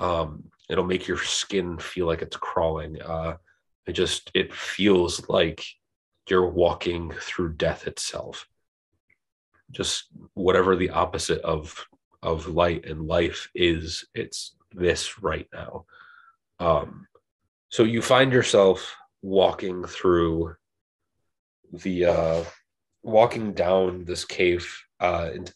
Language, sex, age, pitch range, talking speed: English, male, 30-49, 80-95 Hz, 115 wpm